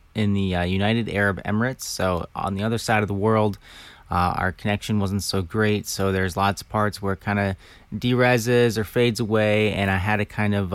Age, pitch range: 30-49, 95-115 Hz